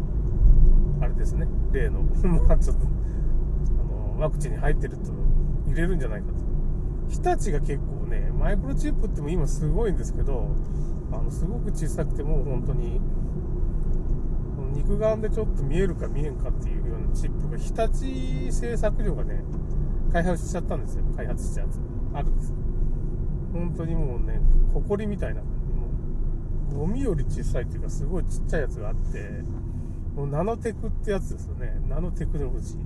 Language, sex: Japanese, male